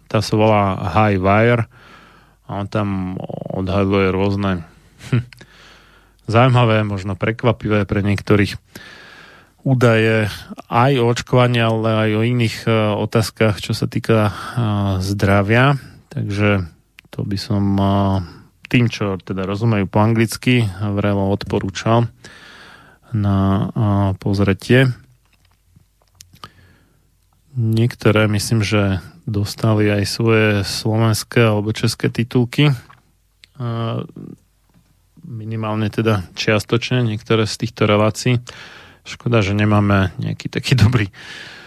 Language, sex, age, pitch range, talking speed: Slovak, male, 30-49, 100-115 Hz, 100 wpm